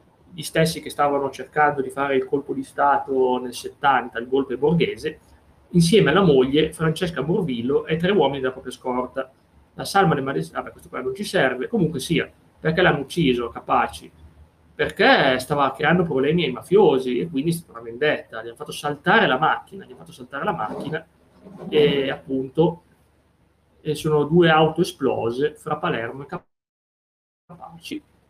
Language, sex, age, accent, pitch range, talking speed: Italian, male, 30-49, native, 130-170 Hz, 165 wpm